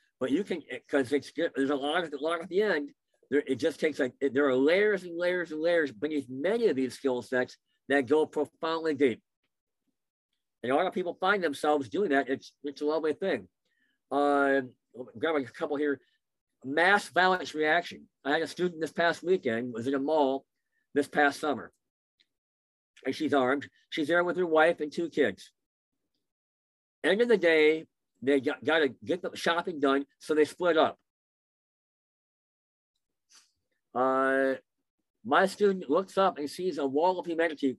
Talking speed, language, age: 175 wpm, English, 50-69